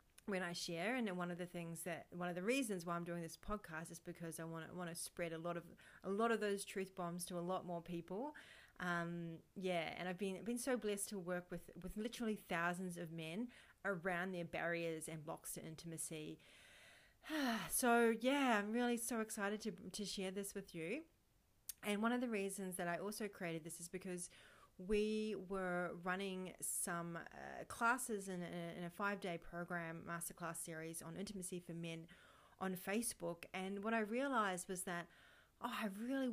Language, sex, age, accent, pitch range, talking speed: English, female, 30-49, Australian, 170-205 Hz, 190 wpm